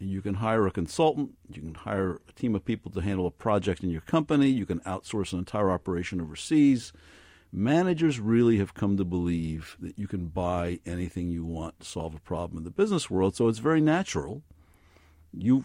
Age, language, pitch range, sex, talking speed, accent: 50-69, English, 85-115 Hz, male, 200 wpm, American